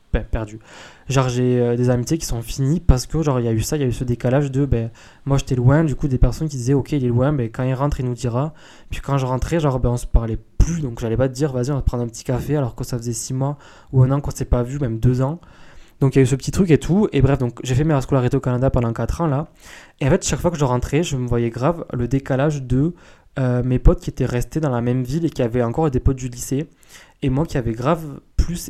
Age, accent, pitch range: 20-39, French, 125-145 Hz